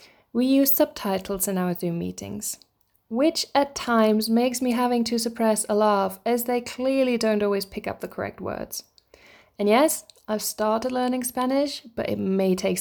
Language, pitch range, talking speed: English, 185-240 Hz, 175 wpm